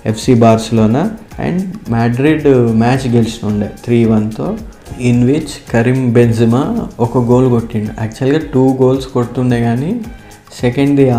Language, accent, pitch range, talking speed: Telugu, native, 115-135 Hz, 105 wpm